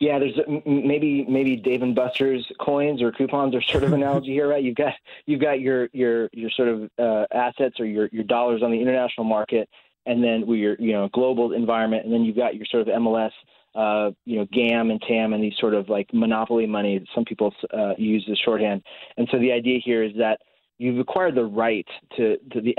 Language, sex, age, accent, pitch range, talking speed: English, male, 20-39, American, 110-125 Hz, 225 wpm